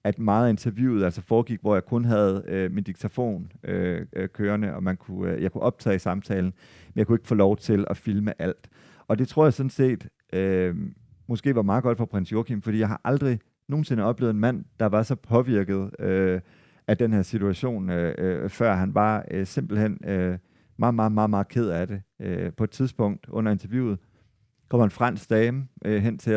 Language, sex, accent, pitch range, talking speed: Danish, male, native, 100-120 Hz, 205 wpm